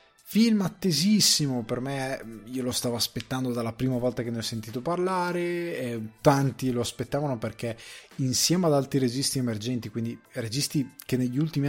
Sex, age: male, 20-39